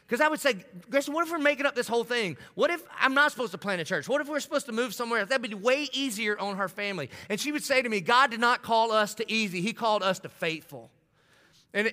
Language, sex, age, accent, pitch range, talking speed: English, male, 30-49, American, 150-230 Hz, 285 wpm